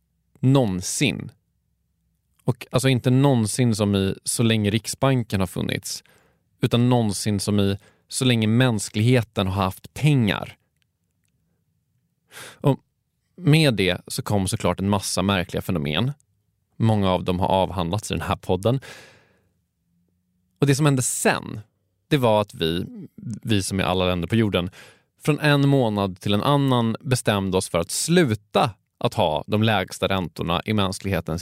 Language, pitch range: Swedish, 95-125 Hz